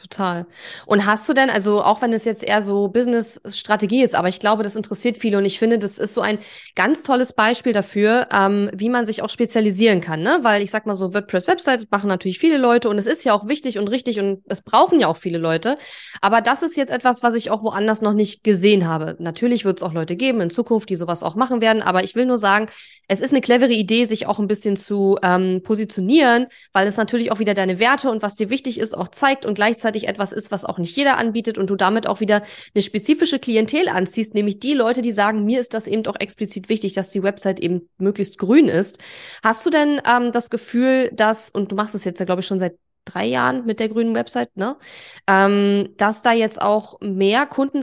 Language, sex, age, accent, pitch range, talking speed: German, female, 20-39, German, 200-240 Hz, 240 wpm